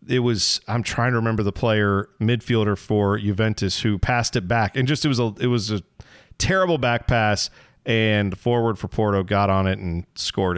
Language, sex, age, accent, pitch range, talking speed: English, male, 40-59, American, 100-125 Hz, 200 wpm